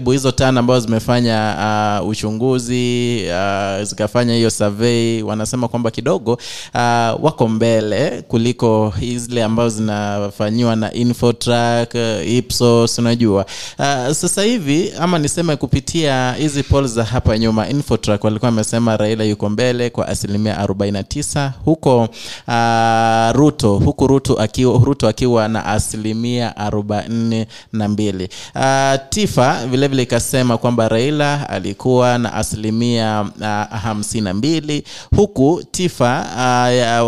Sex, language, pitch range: male, English, 110-140 Hz